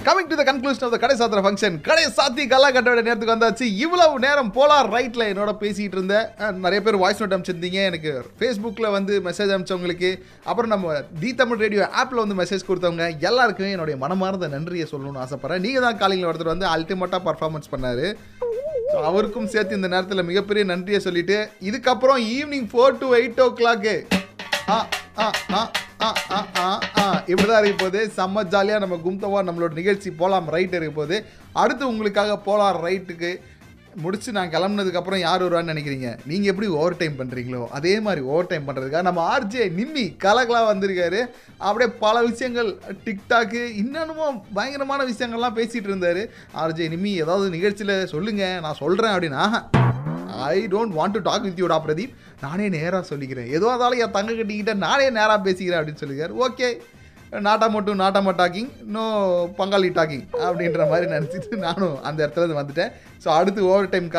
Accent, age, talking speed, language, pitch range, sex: native, 30-49, 125 wpm, Tamil, 175-225 Hz, male